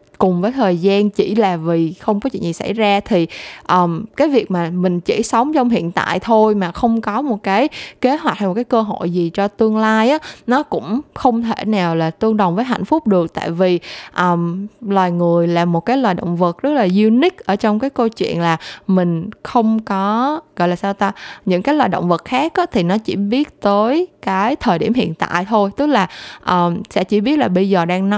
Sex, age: female, 20-39